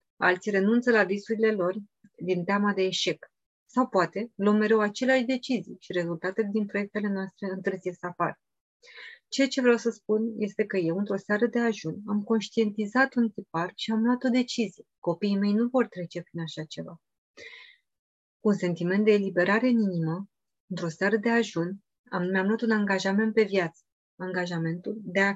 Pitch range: 190-240 Hz